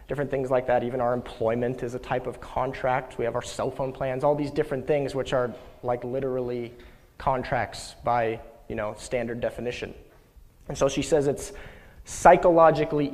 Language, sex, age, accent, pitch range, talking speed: English, male, 30-49, American, 125-150 Hz, 175 wpm